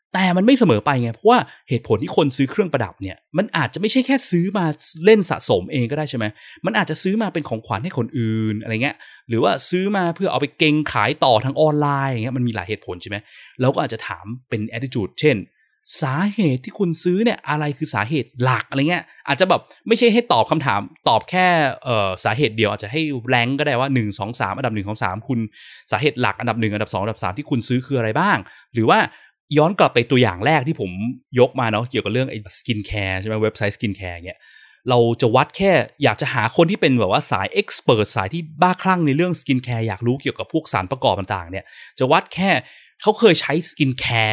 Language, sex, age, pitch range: Thai, male, 20-39, 110-160 Hz